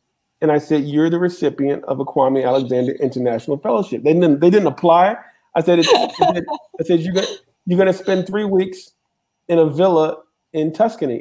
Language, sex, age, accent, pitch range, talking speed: English, male, 40-59, American, 150-180 Hz, 195 wpm